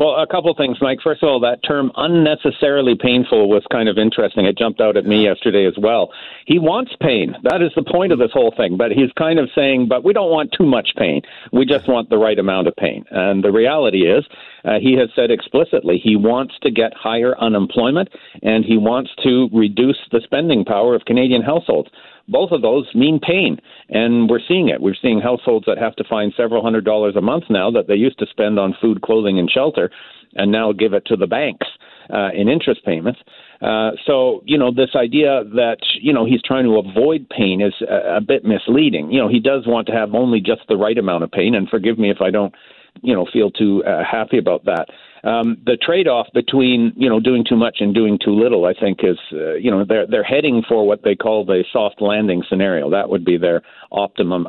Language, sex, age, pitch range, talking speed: English, male, 50-69, 105-125 Hz, 230 wpm